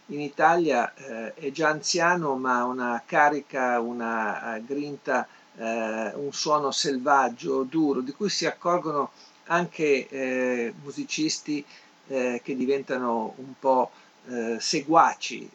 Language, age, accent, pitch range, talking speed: Italian, 50-69, native, 130-160 Hz, 120 wpm